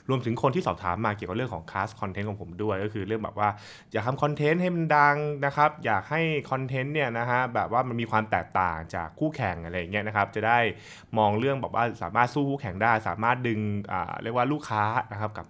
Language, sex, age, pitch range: Thai, male, 20-39, 100-140 Hz